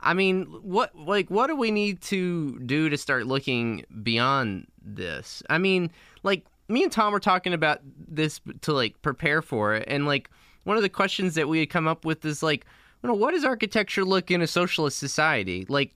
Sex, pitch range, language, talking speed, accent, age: male, 120-170 Hz, English, 205 wpm, American, 20-39